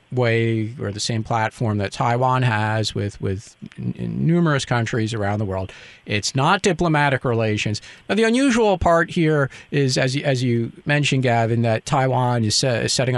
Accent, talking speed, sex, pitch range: American, 160 wpm, male, 115-145 Hz